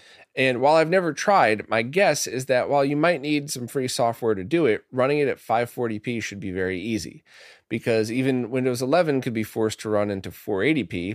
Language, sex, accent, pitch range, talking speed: English, male, American, 110-140 Hz, 205 wpm